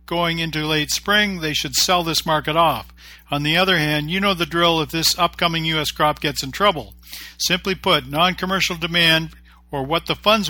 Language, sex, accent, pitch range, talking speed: English, male, American, 145-180 Hz, 200 wpm